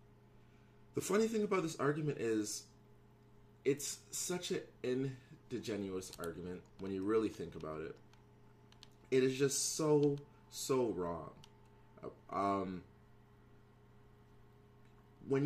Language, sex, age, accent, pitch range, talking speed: English, male, 20-39, American, 105-145 Hz, 100 wpm